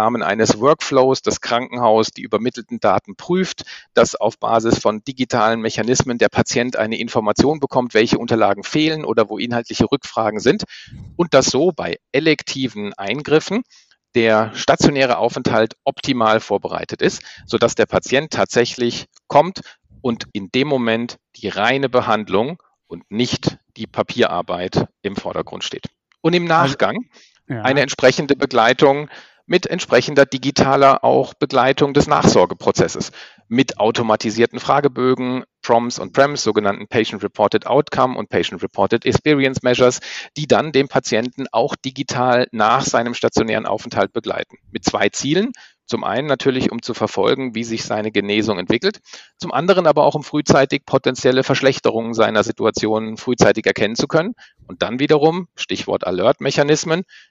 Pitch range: 115-140 Hz